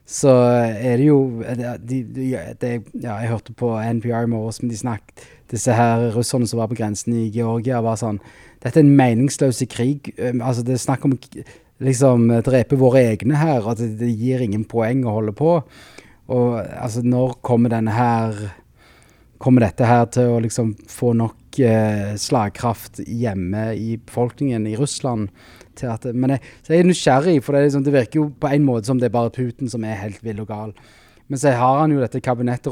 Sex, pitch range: male, 115-130 Hz